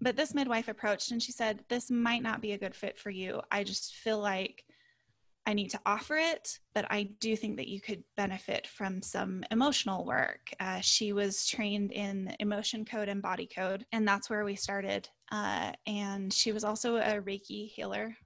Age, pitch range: 20-39, 195-230 Hz